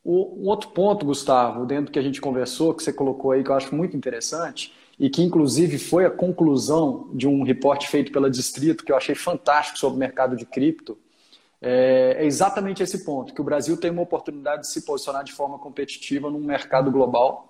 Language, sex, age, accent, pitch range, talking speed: Portuguese, male, 20-39, Brazilian, 140-195 Hz, 200 wpm